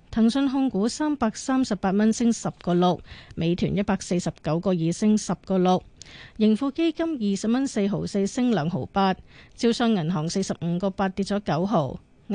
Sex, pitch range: female, 175-225 Hz